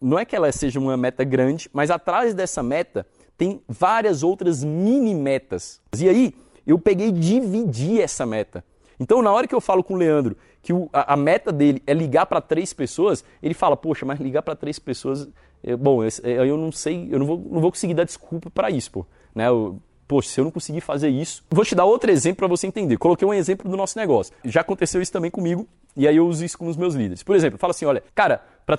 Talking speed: 225 wpm